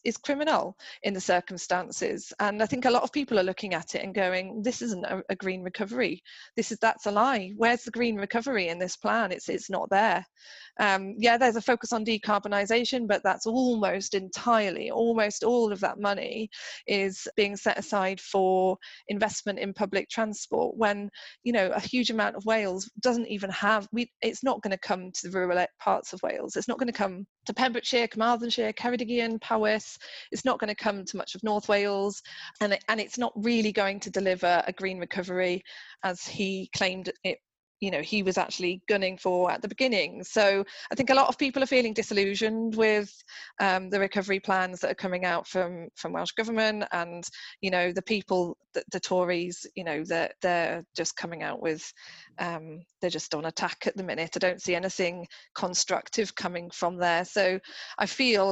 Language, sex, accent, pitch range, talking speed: English, female, British, 185-225 Hz, 195 wpm